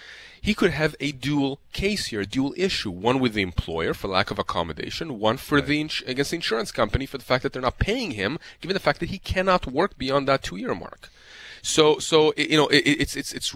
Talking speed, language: 230 wpm, English